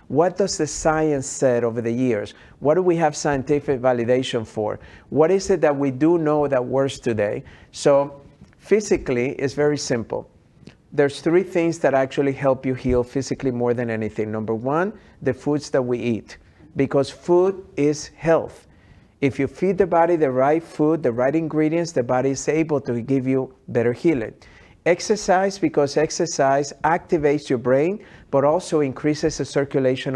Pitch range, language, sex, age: 130-160 Hz, English, male, 50-69